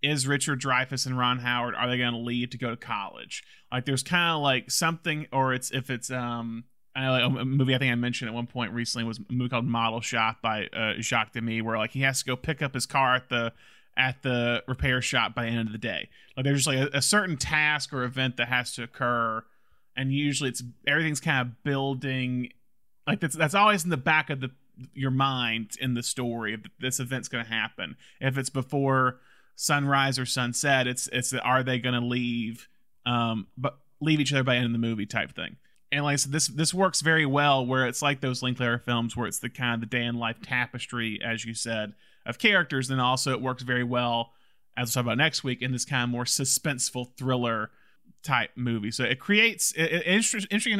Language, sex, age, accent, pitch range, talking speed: English, male, 30-49, American, 120-140 Hz, 235 wpm